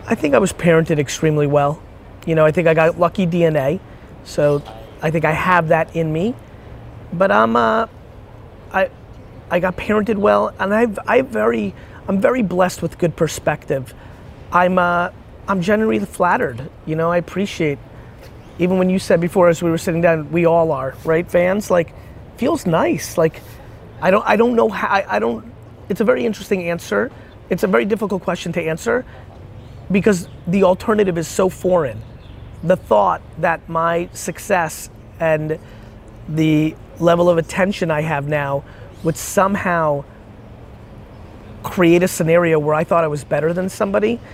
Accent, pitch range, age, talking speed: American, 140-180 Hz, 30-49, 165 wpm